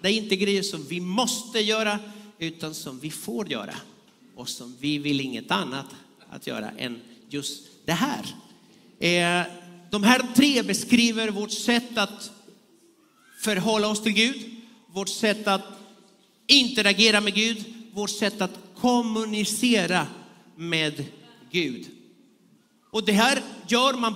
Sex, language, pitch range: male, Swedish, 160-220 Hz